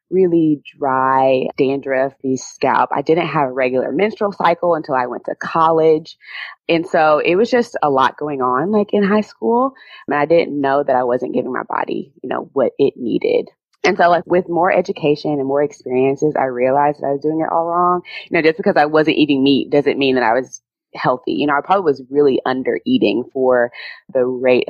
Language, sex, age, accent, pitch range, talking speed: English, female, 20-39, American, 130-165 Hz, 210 wpm